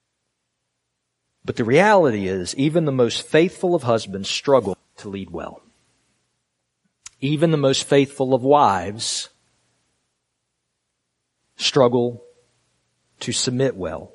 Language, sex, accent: English, male, American